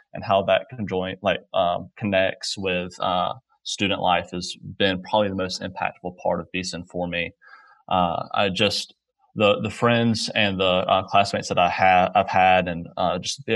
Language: English